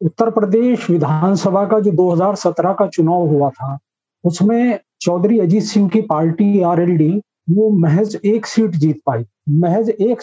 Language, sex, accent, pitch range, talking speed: Hindi, male, native, 175-220 Hz, 145 wpm